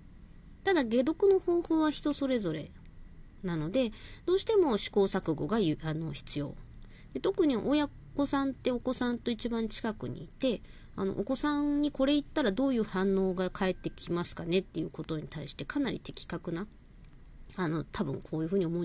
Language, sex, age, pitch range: Japanese, female, 40-59, 155-255 Hz